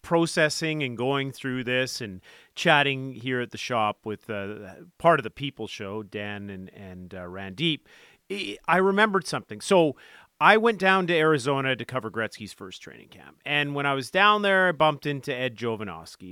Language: English